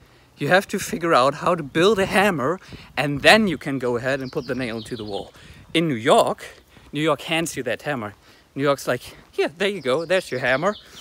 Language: English